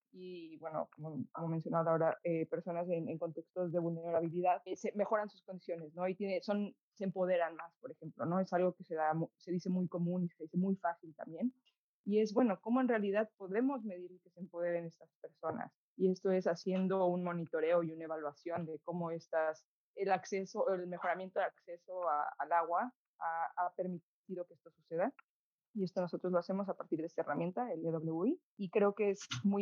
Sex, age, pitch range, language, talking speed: female, 20-39, 175-205 Hz, English, 200 wpm